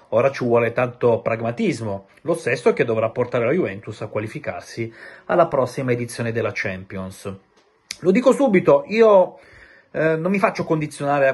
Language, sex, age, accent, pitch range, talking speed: Italian, male, 30-49, native, 115-145 Hz, 160 wpm